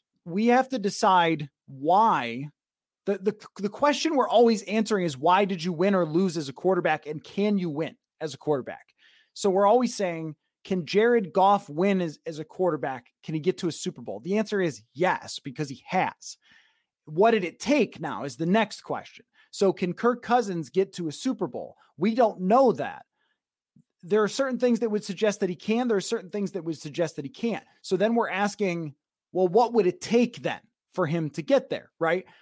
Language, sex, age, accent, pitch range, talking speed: English, male, 30-49, American, 165-220 Hz, 210 wpm